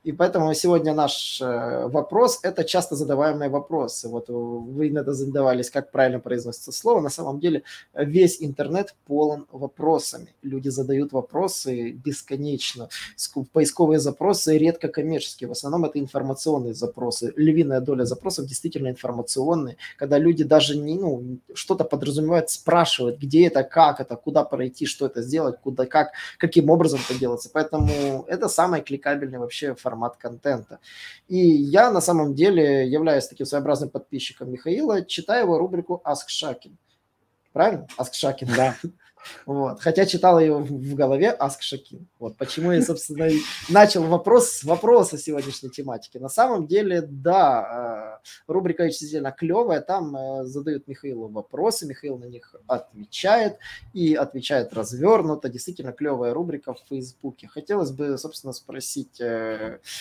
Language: Russian